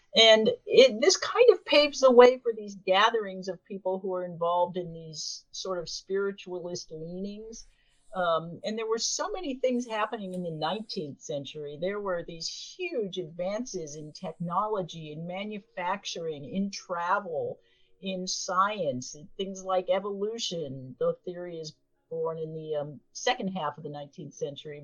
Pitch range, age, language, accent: 170-235 Hz, 50-69, English, American